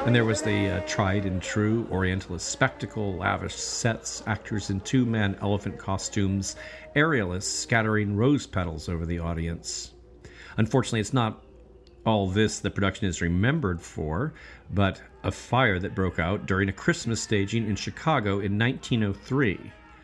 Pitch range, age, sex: 90-115 Hz, 40-59, male